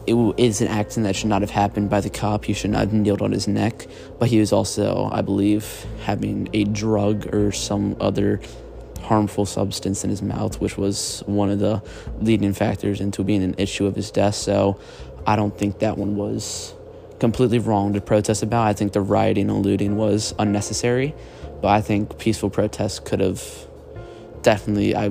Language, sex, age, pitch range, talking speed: English, male, 20-39, 100-110 Hz, 190 wpm